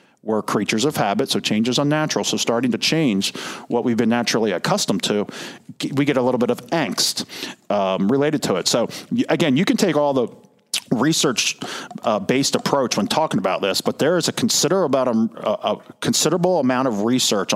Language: English